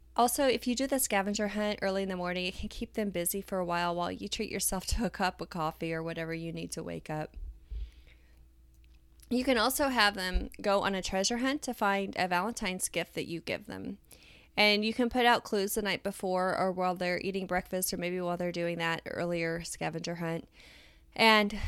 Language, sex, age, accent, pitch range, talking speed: English, female, 20-39, American, 165-200 Hz, 215 wpm